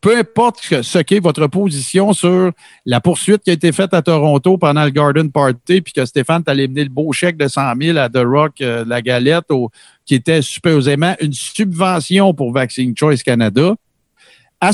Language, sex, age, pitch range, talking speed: French, male, 50-69, 130-185 Hz, 190 wpm